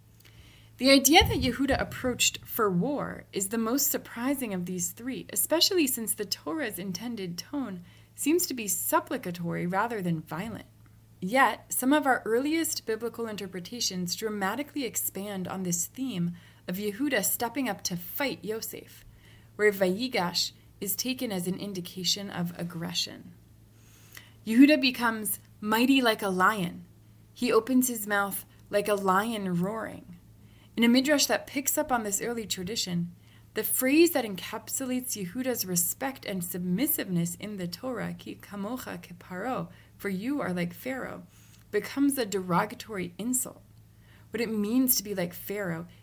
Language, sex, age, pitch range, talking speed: English, female, 20-39, 175-240 Hz, 140 wpm